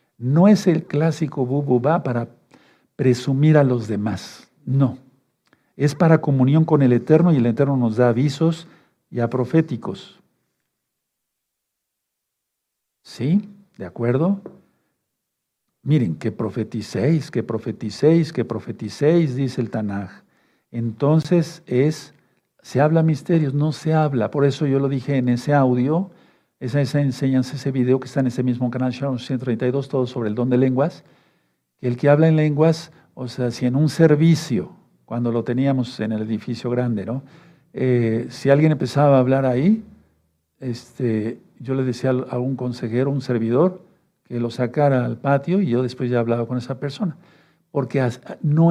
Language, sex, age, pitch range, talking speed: Spanish, male, 60-79, 125-150 Hz, 155 wpm